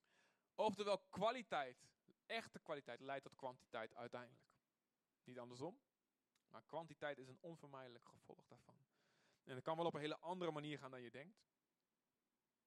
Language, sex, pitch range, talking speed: Dutch, male, 150-225 Hz, 140 wpm